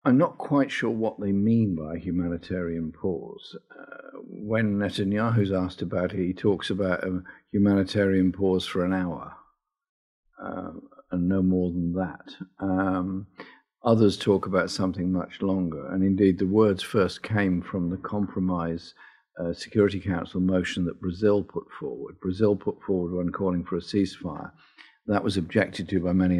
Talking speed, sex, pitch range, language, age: 155 wpm, male, 90-100 Hz, English, 50-69